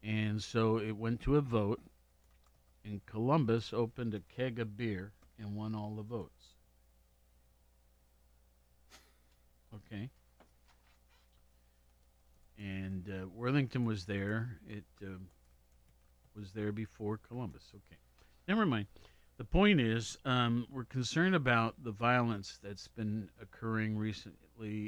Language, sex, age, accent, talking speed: English, male, 50-69, American, 115 wpm